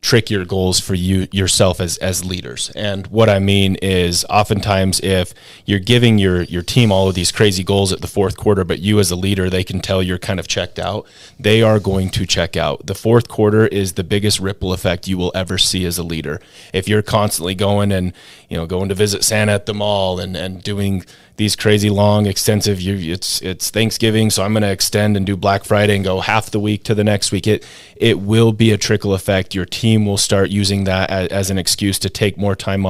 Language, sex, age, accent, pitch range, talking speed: English, male, 30-49, American, 95-105 Hz, 235 wpm